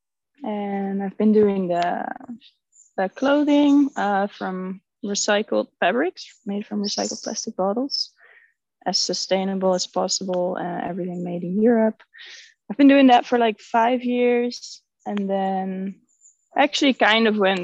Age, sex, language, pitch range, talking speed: 20-39, female, English, 185-245 Hz, 135 wpm